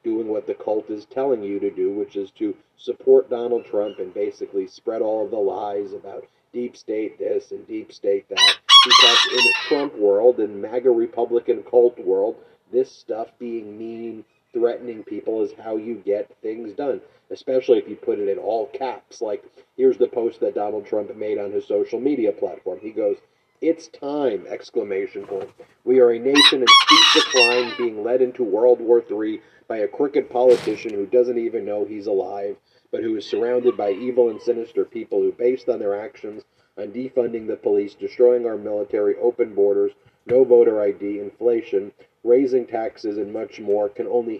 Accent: American